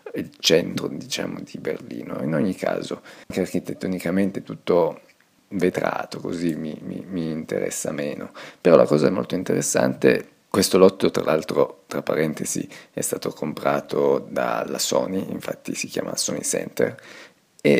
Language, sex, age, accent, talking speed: Italian, male, 30-49, native, 140 wpm